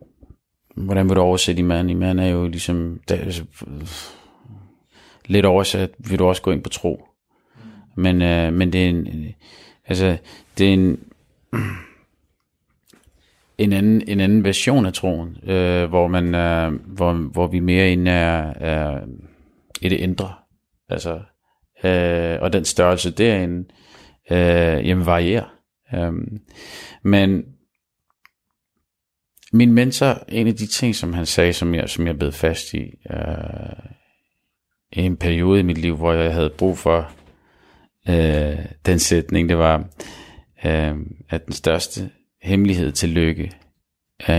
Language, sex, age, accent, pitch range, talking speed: Danish, male, 30-49, native, 80-95 Hz, 125 wpm